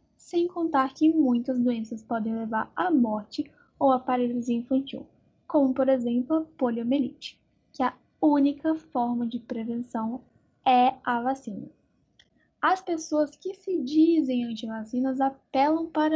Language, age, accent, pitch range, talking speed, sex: Portuguese, 10-29, Brazilian, 240-310 Hz, 130 wpm, female